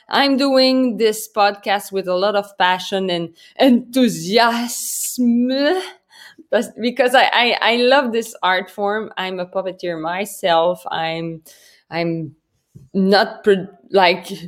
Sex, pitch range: female, 180-245 Hz